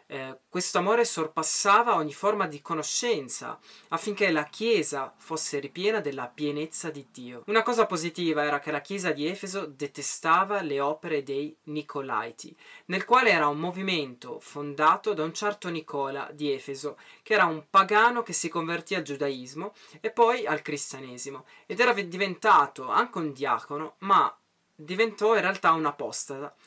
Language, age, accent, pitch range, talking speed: Italian, 20-39, native, 145-200 Hz, 150 wpm